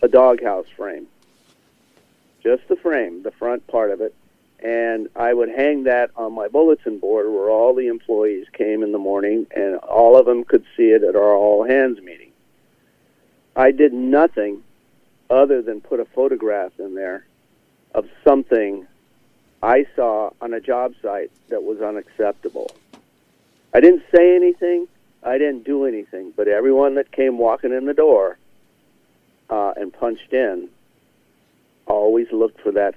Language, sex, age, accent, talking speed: English, male, 50-69, American, 155 wpm